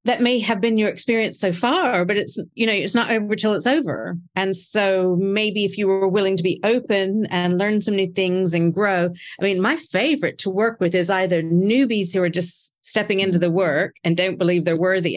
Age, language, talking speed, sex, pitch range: 40-59, English, 225 wpm, female, 170-205 Hz